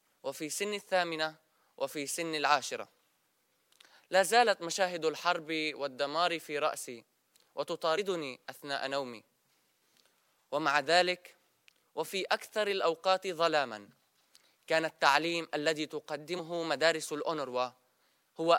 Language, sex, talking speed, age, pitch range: Arabic, male, 95 wpm, 20-39, 150-180 Hz